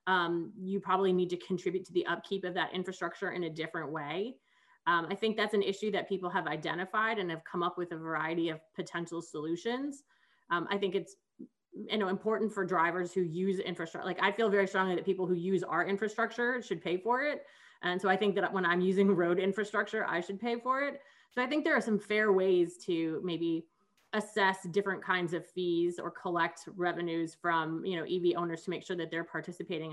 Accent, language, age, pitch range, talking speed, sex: American, English, 20-39, 170-210 Hz, 215 wpm, female